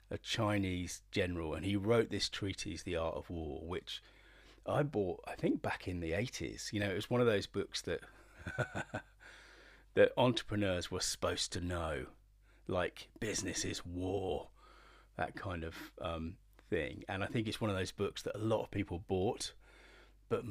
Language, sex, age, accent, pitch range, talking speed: English, male, 30-49, British, 90-105 Hz, 175 wpm